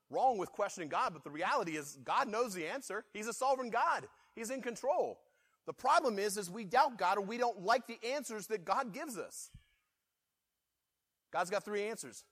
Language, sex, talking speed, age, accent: English, male, 195 wpm, 30-49, American